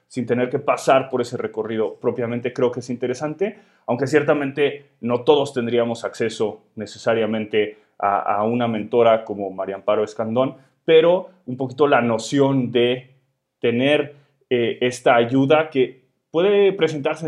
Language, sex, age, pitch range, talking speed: Spanish, male, 30-49, 120-150 Hz, 140 wpm